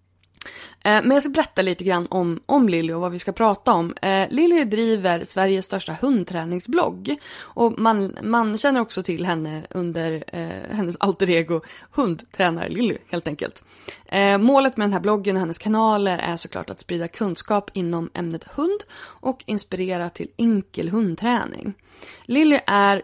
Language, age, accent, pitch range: Swedish, 20-39, native, 185-250 Hz